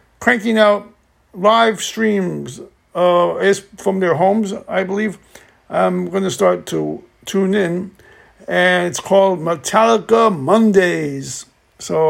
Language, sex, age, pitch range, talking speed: English, male, 60-79, 170-205 Hz, 115 wpm